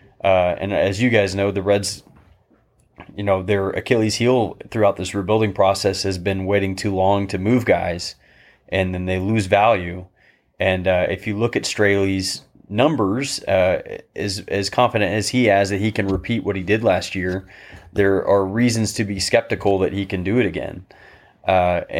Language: English